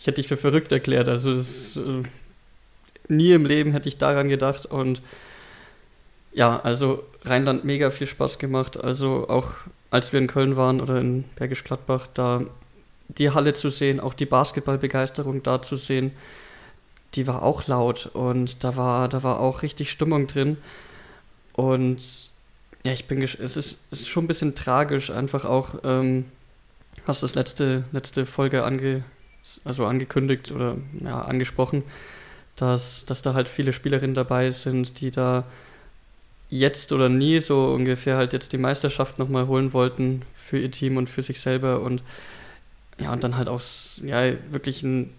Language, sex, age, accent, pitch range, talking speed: German, male, 20-39, German, 125-135 Hz, 160 wpm